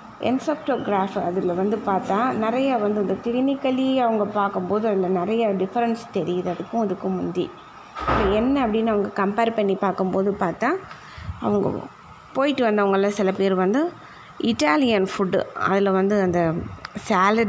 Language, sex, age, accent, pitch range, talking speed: Tamil, female, 20-39, native, 190-230 Hz, 125 wpm